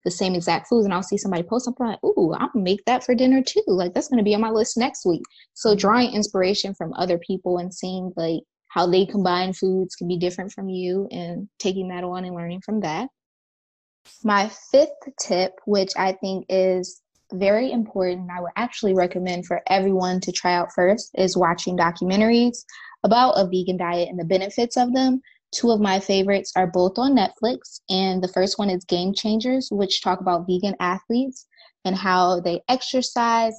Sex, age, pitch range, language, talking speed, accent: female, 20-39, 180-220 Hz, English, 195 wpm, American